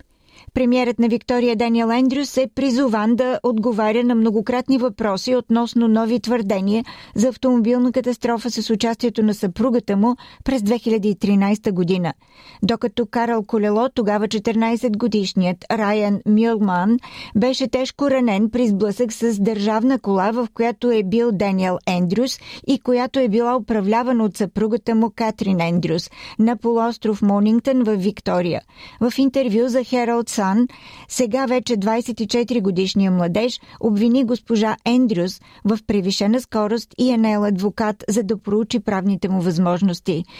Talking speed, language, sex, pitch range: 130 wpm, Bulgarian, female, 210-245 Hz